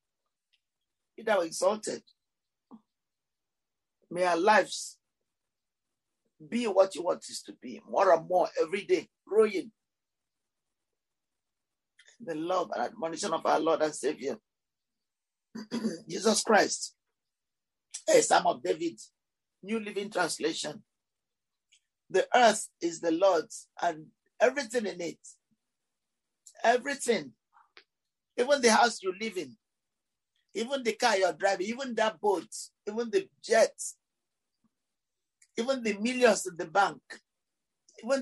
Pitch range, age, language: 185-250 Hz, 50-69, English